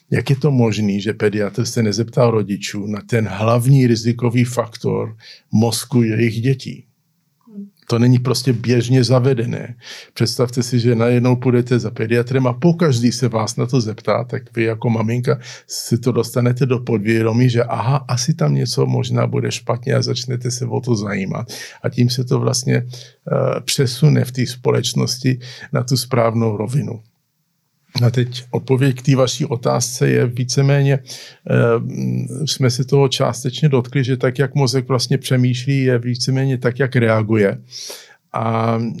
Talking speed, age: 150 wpm, 50-69